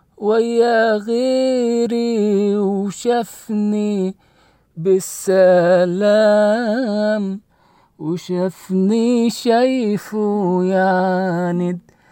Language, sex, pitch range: English, male, 170-215 Hz